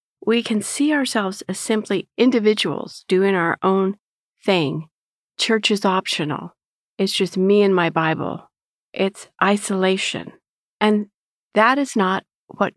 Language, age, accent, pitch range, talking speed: English, 50-69, American, 185-230 Hz, 125 wpm